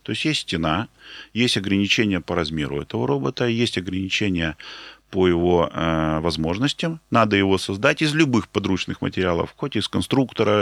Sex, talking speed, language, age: male, 145 wpm, Russian, 20-39